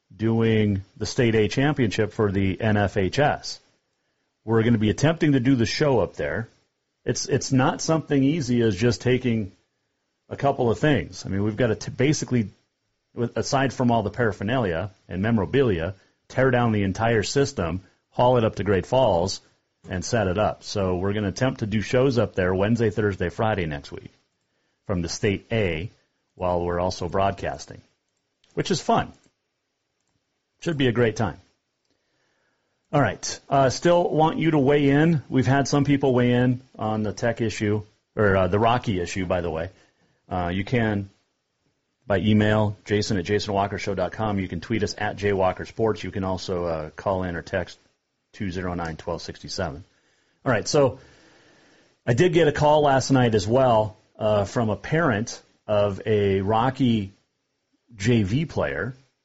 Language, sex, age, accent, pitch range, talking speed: English, male, 40-59, American, 100-130 Hz, 165 wpm